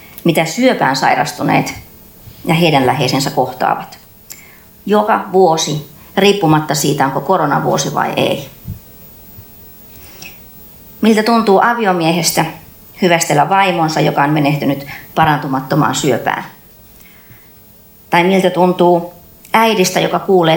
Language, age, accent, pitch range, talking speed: Finnish, 30-49, native, 150-190 Hz, 90 wpm